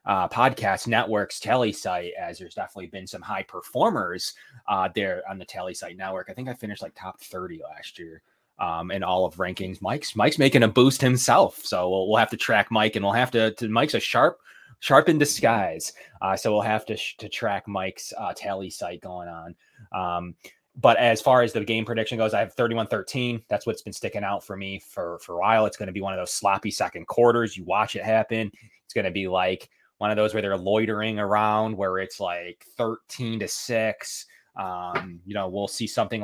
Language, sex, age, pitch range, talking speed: English, male, 20-39, 95-115 Hz, 215 wpm